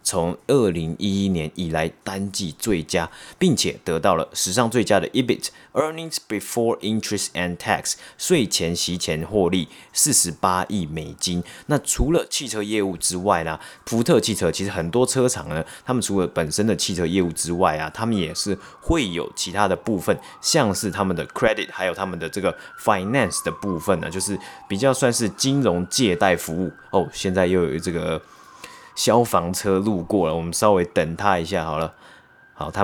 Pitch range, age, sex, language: 85-100 Hz, 30-49, male, Chinese